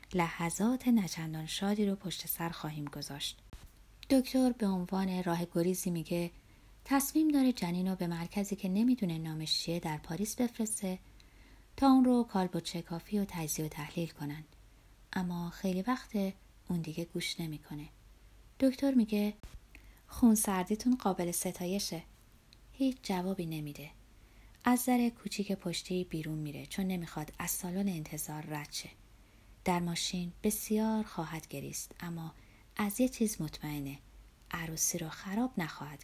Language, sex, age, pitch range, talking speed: Persian, female, 30-49, 155-215 Hz, 130 wpm